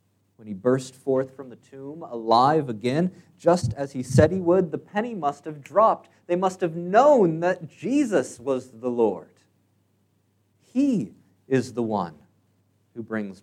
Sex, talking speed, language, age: male, 155 wpm, English, 40-59